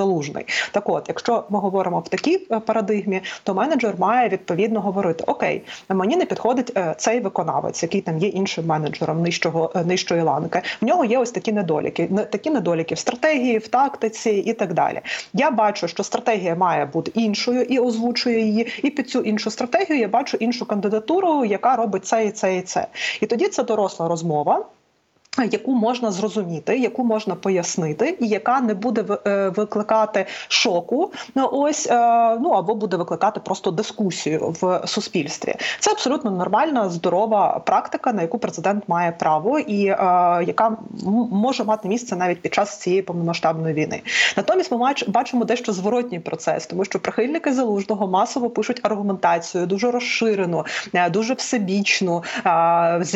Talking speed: 150 wpm